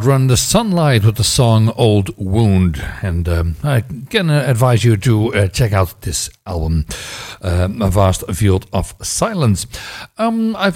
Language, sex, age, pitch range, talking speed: English, male, 60-79, 95-125 Hz, 150 wpm